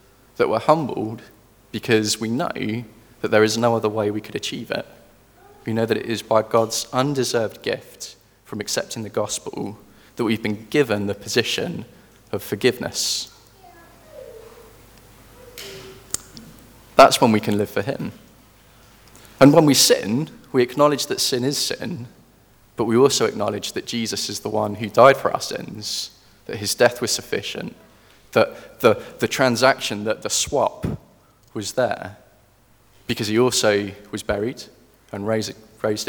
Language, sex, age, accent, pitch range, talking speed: English, male, 20-39, British, 105-130 Hz, 150 wpm